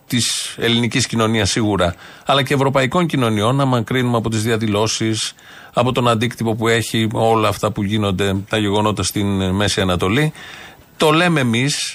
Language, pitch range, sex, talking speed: Greek, 105-140 Hz, male, 150 wpm